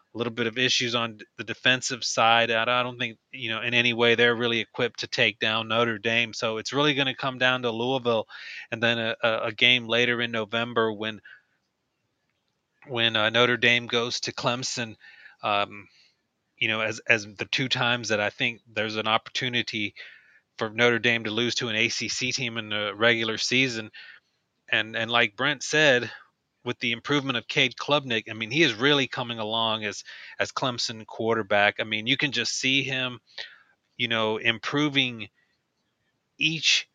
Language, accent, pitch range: English, American, 115-130 Hz